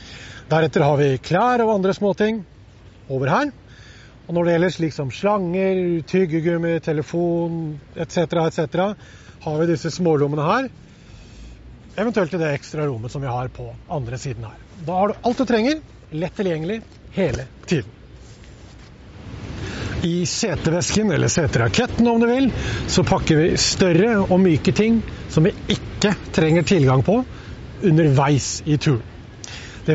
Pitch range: 130-185 Hz